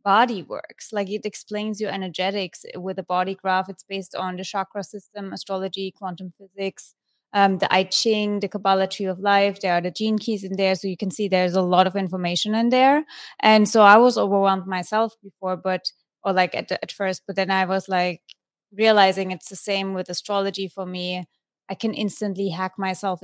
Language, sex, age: English, female, 20-39